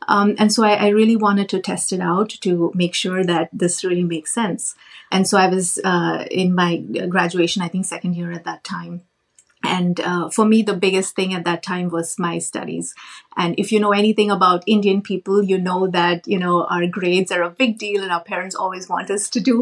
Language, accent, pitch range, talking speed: English, Indian, 175-205 Hz, 225 wpm